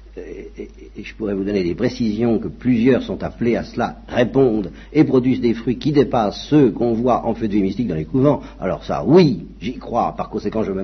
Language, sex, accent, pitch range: French, male, French, 85-145 Hz